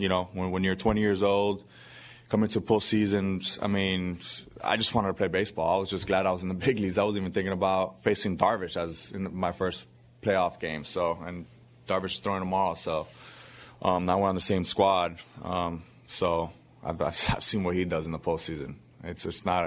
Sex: male